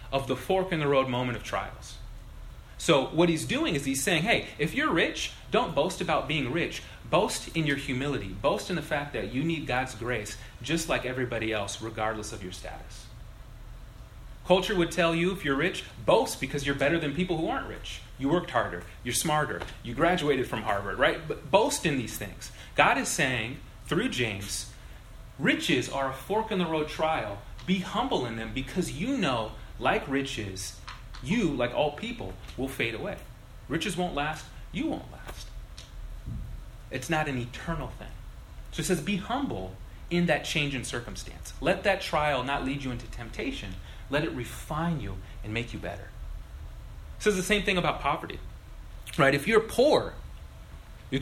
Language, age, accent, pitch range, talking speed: English, 30-49, American, 110-165 Hz, 180 wpm